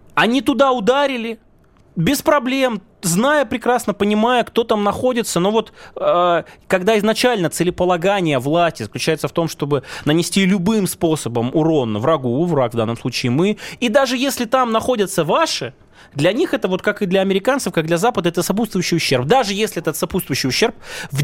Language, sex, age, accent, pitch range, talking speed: Russian, male, 20-39, native, 140-210 Hz, 165 wpm